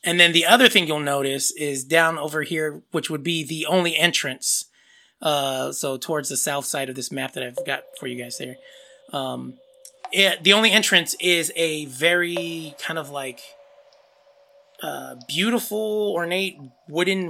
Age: 20-39